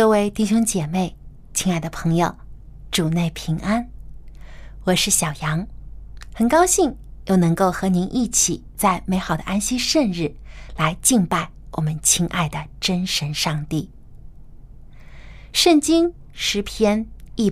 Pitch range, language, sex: 160-235 Hz, Chinese, female